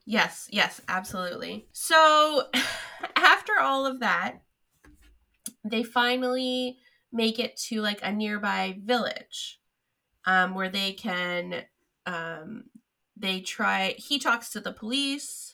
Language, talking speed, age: English, 110 wpm, 20-39